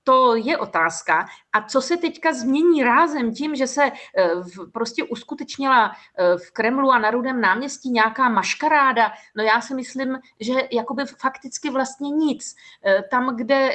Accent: native